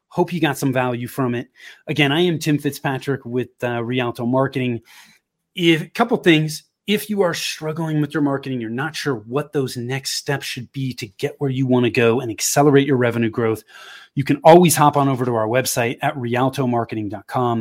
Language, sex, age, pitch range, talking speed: English, male, 30-49, 125-155 Hz, 200 wpm